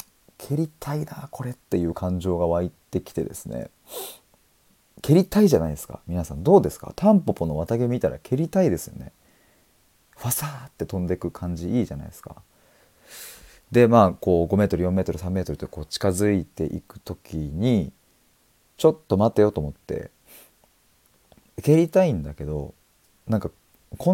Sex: male